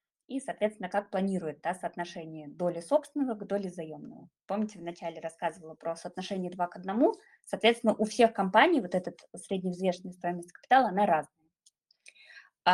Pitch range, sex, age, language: 180-220 Hz, female, 20-39, Russian